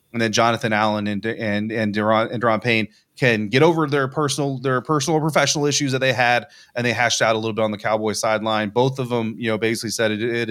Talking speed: 250 wpm